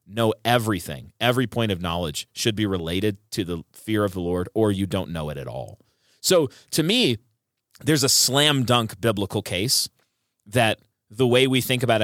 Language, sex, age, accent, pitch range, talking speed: English, male, 30-49, American, 100-130 Hz, 185 wpm